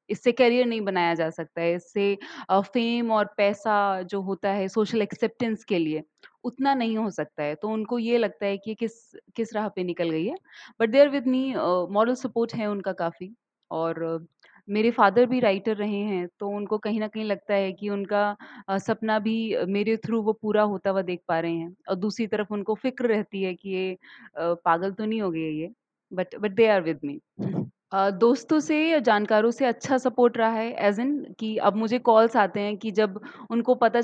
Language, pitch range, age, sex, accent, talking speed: English, 195-230 Hz, 30-49, female, Indian, 190 wpm